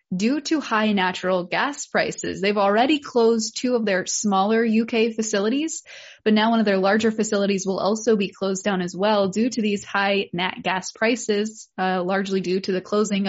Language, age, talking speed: English, 20-39, 190 wpm